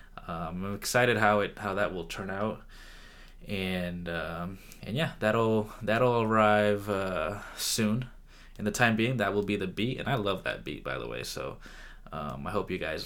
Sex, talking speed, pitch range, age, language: male, 195 wpm, 95-105 Hz, 20-39, English